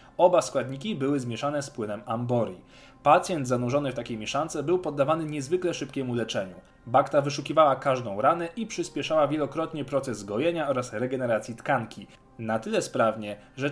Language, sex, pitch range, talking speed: Polish, male, 115-160 Hz, 145 wpm